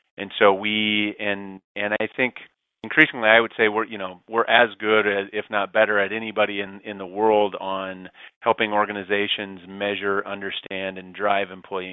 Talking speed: 175 wpm